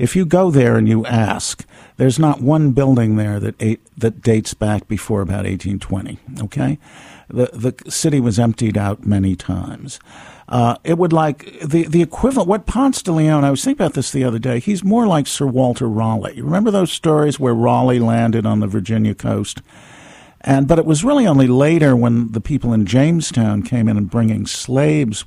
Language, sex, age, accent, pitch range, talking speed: English, male, 50-69, American, 105-140 Hz, 200 wpm